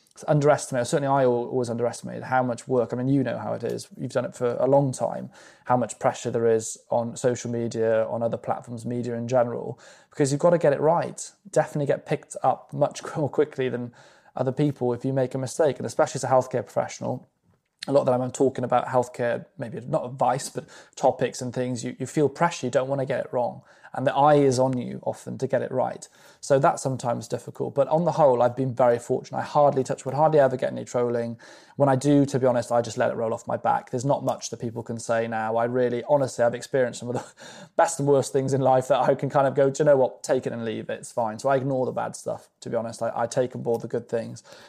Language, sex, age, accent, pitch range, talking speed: English, male, 20-39, British, 120-140 Hz, 260 wpm